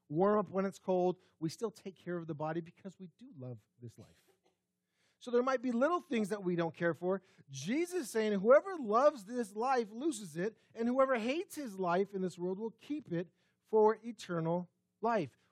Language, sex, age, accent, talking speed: English, male, 40-59, American, 200 wpm